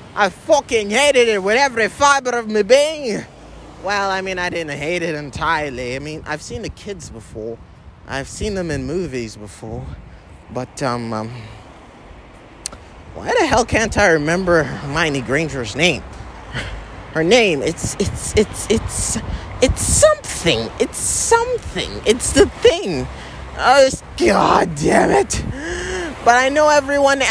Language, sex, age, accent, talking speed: English, male, 30-49, American, 140 wpm